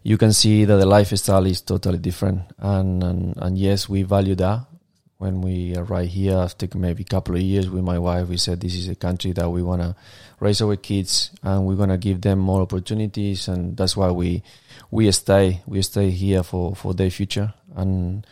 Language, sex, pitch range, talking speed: English, male, 95-105 Hz, 210 wpm